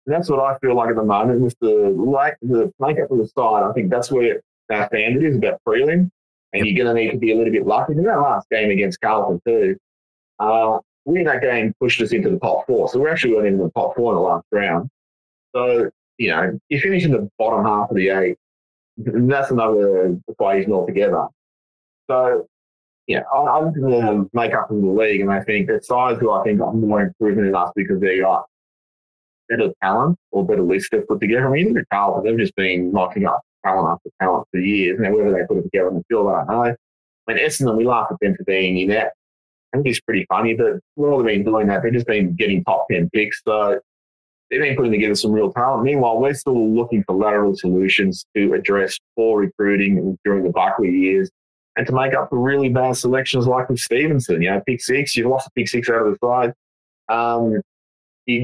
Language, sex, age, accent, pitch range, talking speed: English, male, 20-39, Australian, 95-125 Hz, 230 wpm